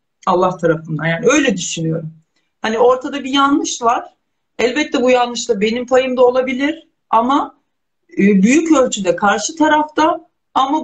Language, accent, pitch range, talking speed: Turkish, native, 200-280 Hz, 125 wpm